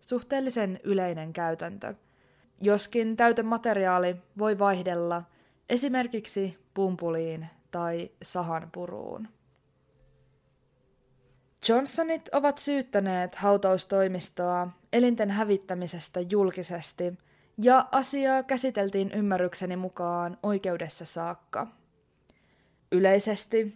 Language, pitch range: Finnish, 180-235 Hz